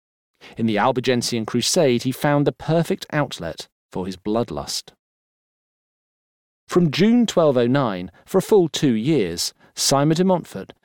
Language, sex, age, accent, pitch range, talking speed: English, male, 40-59, British, 110-155 Hz, 125 wpm